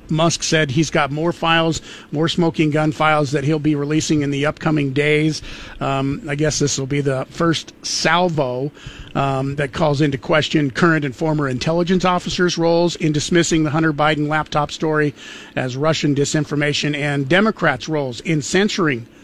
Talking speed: 165 wpm